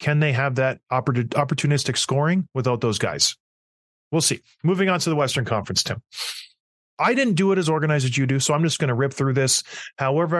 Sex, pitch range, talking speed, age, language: male, 130-170 Hz, 210 wpm, 30-49, English